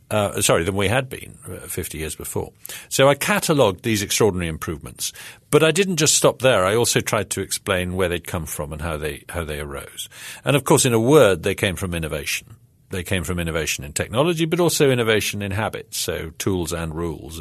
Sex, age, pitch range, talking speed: male, 50-69, 80-110 Hz, 215 wpm